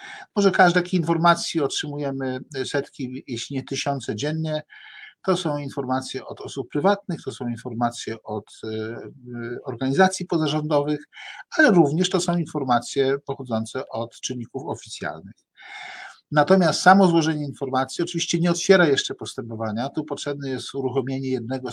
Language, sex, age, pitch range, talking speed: Polish, male, 50-69, 120-155 Hz, 125 wpm